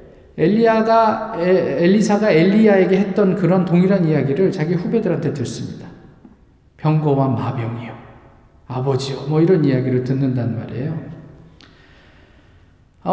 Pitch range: 125-190 Hz